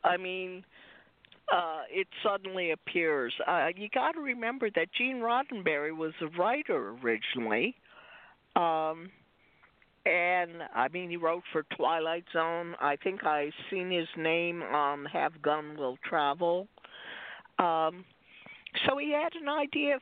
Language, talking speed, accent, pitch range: English, 130 wpm, American, 155-210 Hz